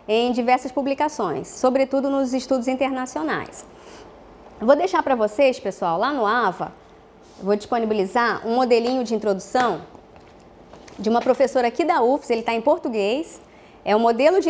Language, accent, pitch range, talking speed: English, Brazilian, 220-285 Hz, 155 wpm